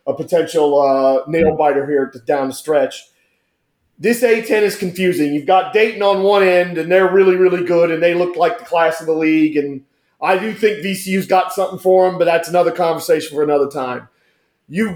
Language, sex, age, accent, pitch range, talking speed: English, male, 40-59, American, 165-205 Hz, 205 wpm